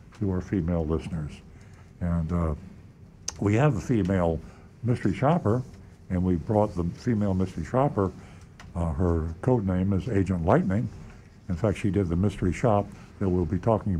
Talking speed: 160 wpm